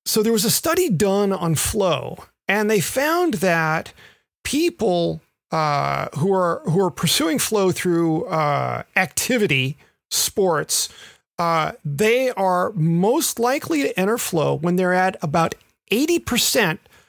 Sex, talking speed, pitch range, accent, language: male, 135 wpm, 165-215 Hz, American, English